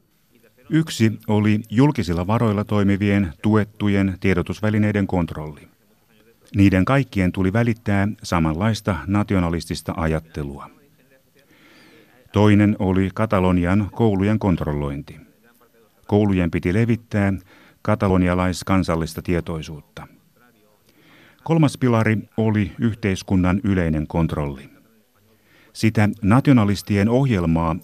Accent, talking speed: native, 75 wpm